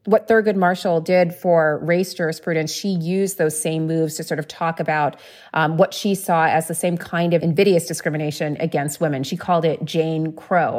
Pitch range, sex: 160-190 Hz, female